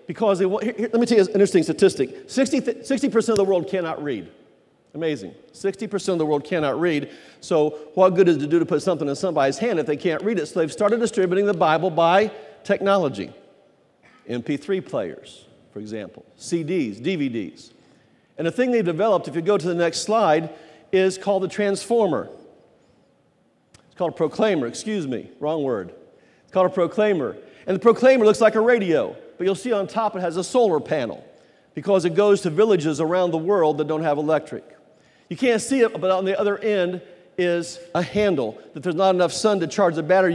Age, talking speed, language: 50-69, 195 wpm, English